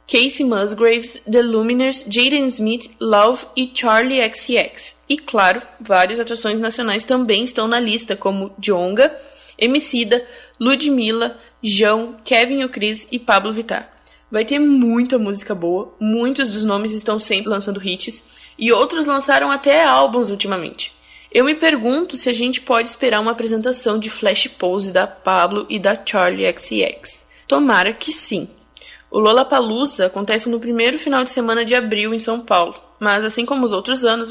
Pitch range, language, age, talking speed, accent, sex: 195-245 Hz, Portuguese, 20-39, 155 wpm, Brazilian, female